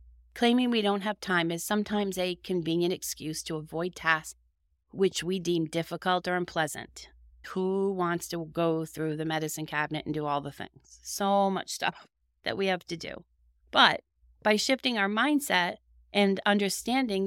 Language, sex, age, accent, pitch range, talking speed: English, female, 30-49, American, 155-205 Hz, 165 wpm